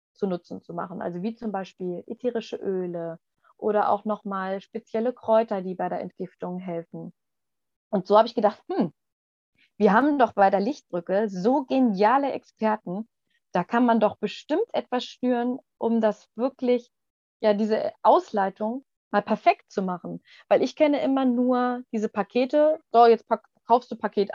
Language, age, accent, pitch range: German, 20-39, German, 195-245 Hz